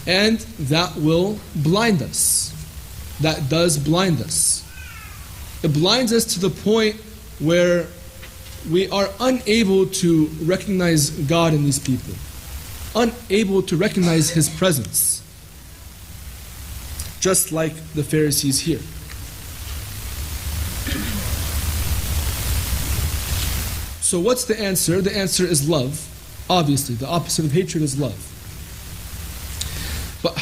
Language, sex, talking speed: English, male, 100 wpm